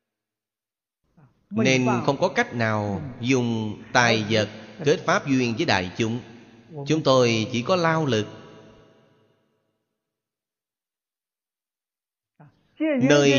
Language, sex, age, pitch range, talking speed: Vietnamese, male, 30-49, 105-135 Hz, 95 wpm